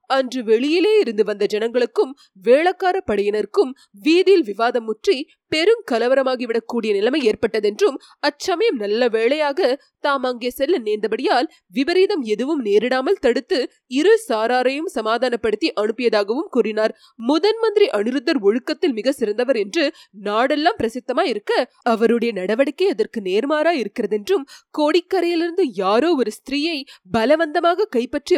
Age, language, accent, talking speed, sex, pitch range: 20-39, Tamil, native, 105 wpm, female, 225-330 Hz